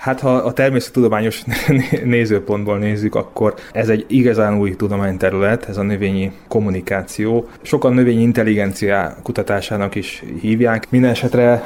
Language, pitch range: Hungarian, 100-125 Hz